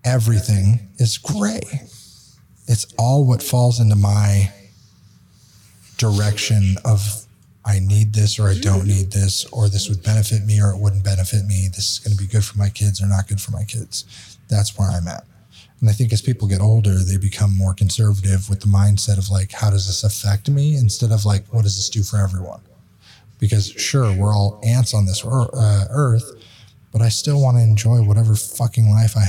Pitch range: 100-125 Hz